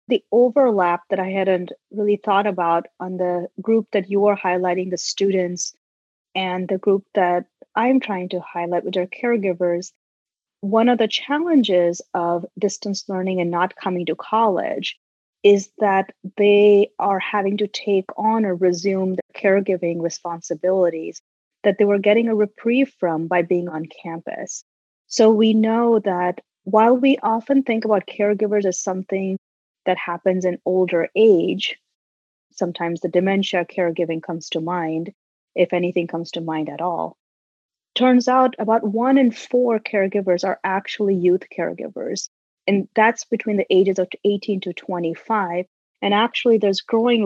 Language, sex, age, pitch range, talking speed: English, female, 30-49, 180-215 Hz, 150 wpm